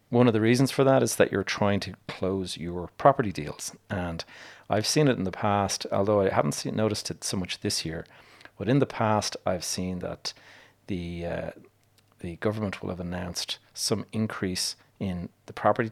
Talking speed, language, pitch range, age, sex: 185 wpm, English, 90-110 Hz, 30-49, male